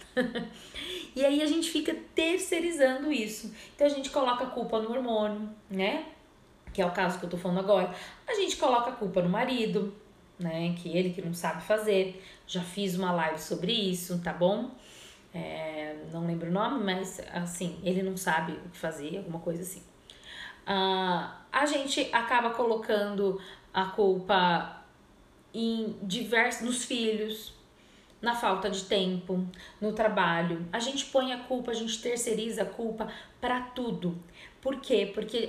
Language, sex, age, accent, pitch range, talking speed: Portuguese, female, 20-39, Brazilian, 185-250 Hz, 160 wpm